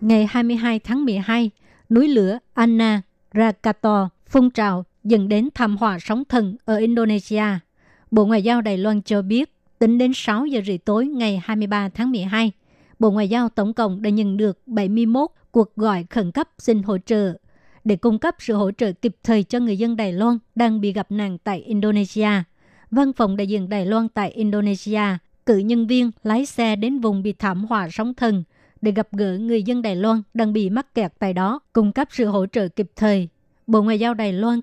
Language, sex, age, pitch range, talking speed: Vietnamese, male, 60-79, 205-230 Hz, 200 wpm